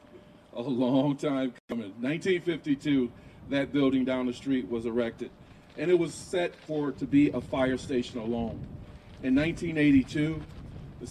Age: 40-59